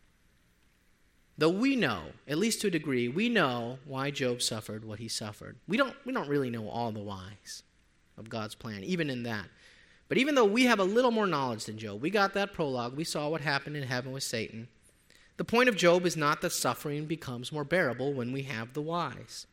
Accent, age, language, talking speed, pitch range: American, 30-49, English, 215 wpm, 120-165 Hz